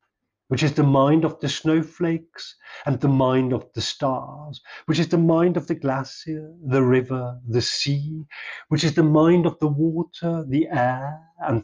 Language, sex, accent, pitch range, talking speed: English, male, British, 120-150 Hz, 175 wpm